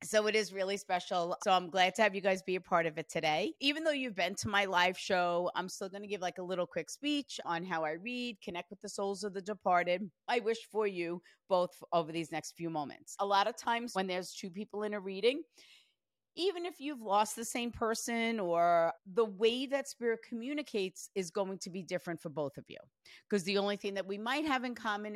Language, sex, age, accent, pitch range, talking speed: English, female, 40-59, American, 180-240 Hz, 240 wpm